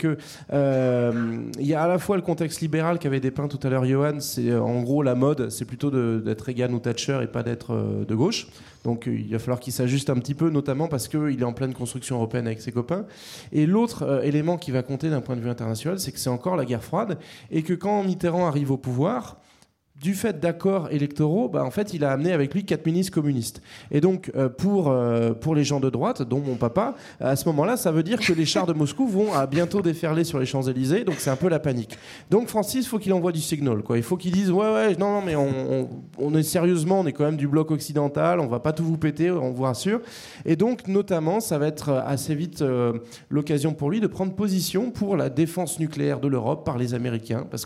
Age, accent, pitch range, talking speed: 20-39, French, 130-175 Hz, 250 wpm